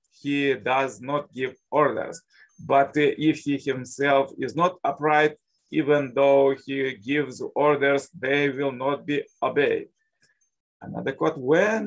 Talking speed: 125 wpm